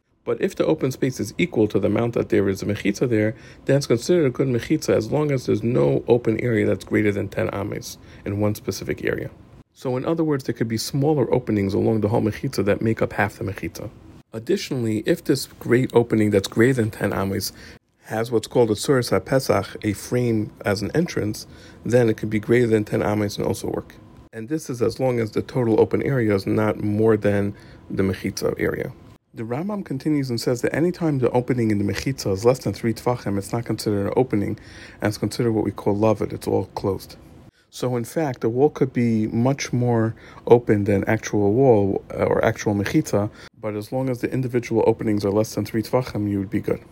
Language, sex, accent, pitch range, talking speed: English, male, American, 105-125 Hz, 220 wpm